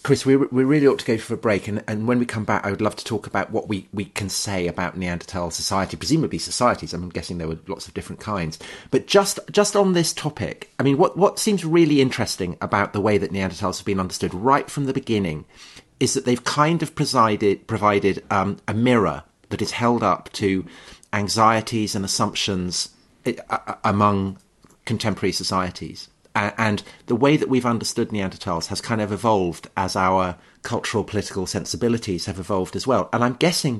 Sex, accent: male, British